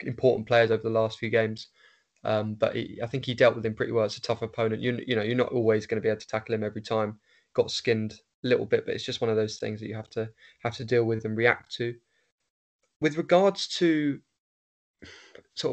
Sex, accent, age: male, British, 20-39